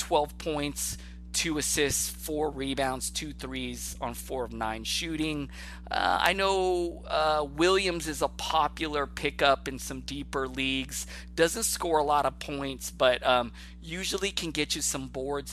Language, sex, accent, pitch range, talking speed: English, male, American, 115-145 Hz, 155 wpm